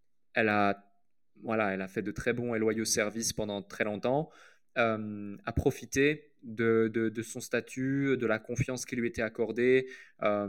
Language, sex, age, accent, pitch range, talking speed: French, male, 20-39, French, 110-135 Hz, 175 wpm